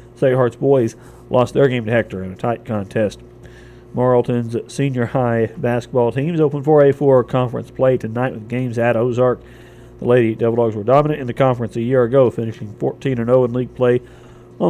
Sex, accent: male, American